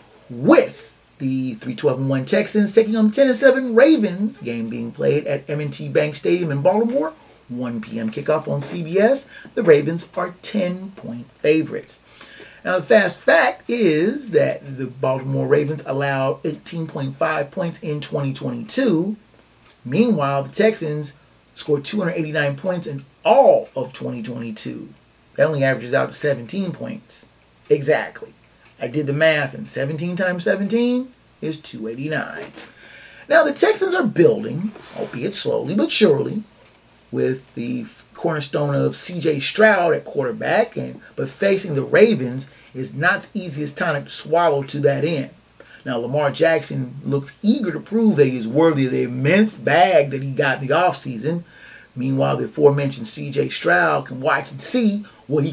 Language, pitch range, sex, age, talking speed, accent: English, 135-195 Hz, male, 30-49, 145 wpm, American